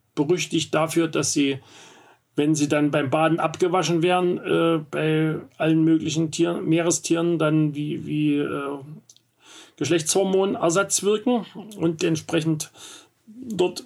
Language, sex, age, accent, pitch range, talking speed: German, male, 40-59, German, 150-175 Hz, 115 wpm